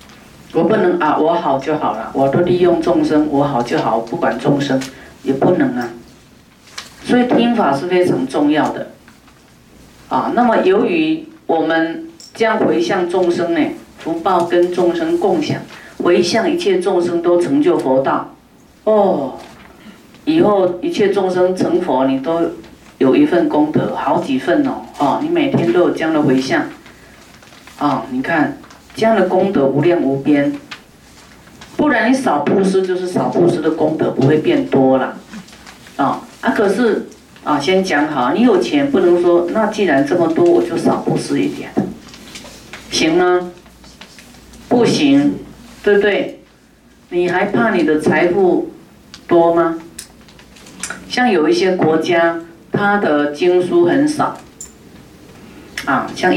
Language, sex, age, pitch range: Chinese, female, 40-59, 165-265 Hz